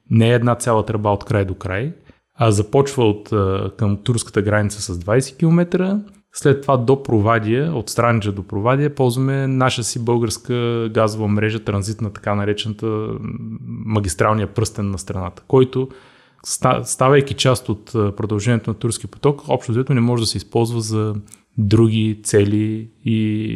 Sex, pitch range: male, 105-120 Hz